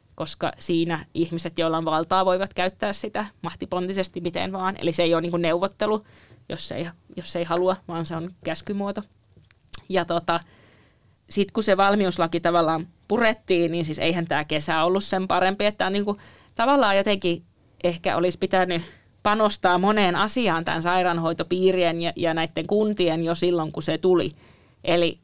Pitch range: 165-190 Hz